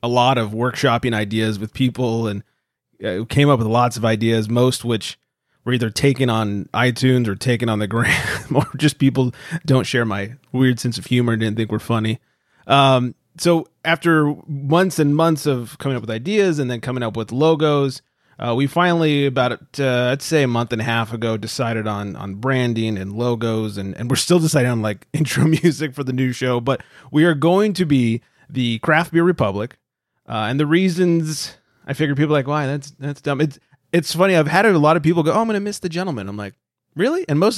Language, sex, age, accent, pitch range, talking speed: English, male, 30-49, American, 115-155 Hz, 215 wpm